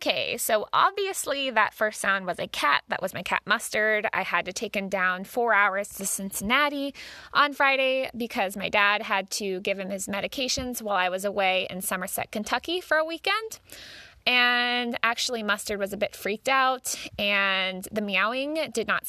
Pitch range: 195-255 Hz